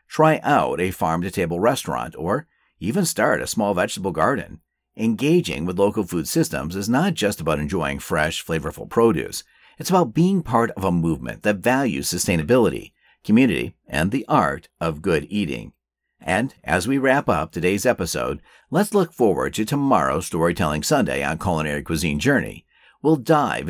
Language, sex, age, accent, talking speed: English, male, 50-69, American, 155 wpm